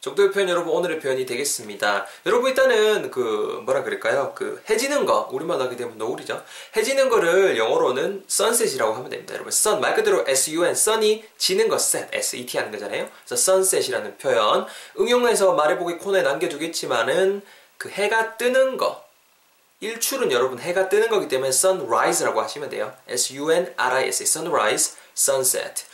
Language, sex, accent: Korean, male, native